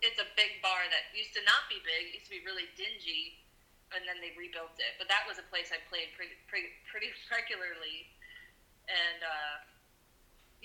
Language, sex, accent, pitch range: English, female, American, 175-210 Hz